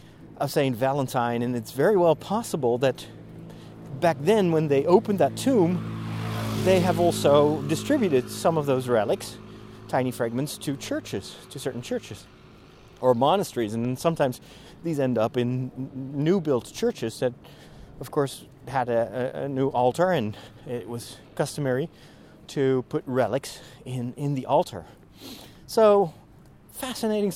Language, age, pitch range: English, 30-49, 125-165 Hz